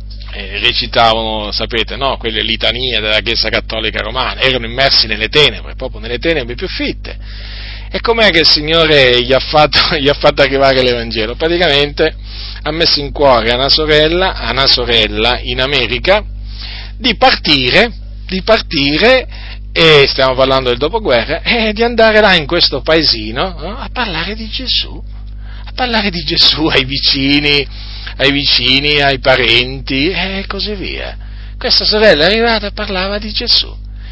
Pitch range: 105-160 Hz